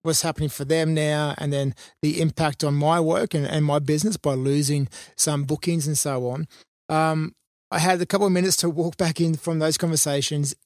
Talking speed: 210 wpm